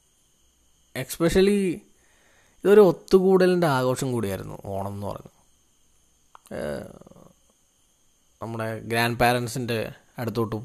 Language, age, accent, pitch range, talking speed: Malayalam, 20-39, native, 105-125 Hz, 70 wpm